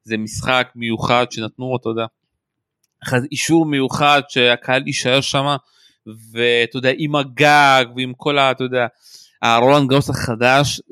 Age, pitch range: 30-49, 115-145 Hz